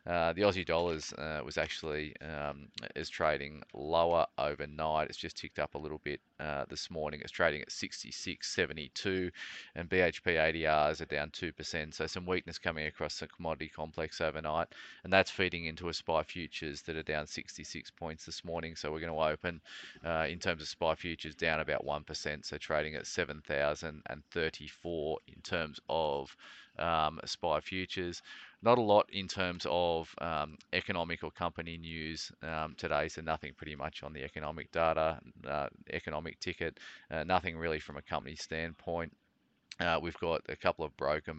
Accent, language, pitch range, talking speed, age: Australian, English, 75-85 Hz, 170 wpm, 30-49